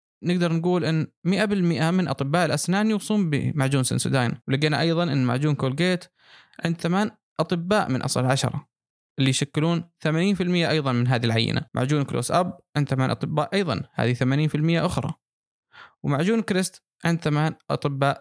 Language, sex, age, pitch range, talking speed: Arabic, male, 20-39, 140-175 Hz, 140 wpm